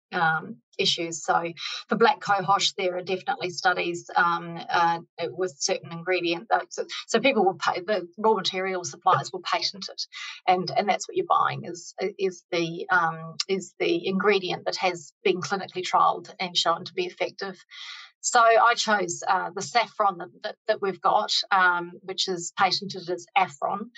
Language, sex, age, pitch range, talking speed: English, female, 30-49, 180-220 Hz, 170 wpm